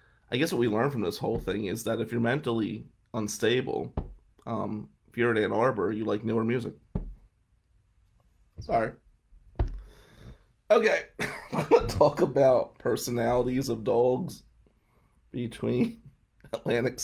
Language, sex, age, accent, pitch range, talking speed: English, male, 30-49, American, 105-125 Hz, 130 wpm